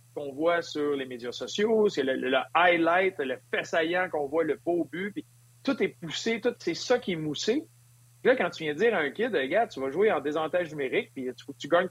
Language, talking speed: French, 250 wpm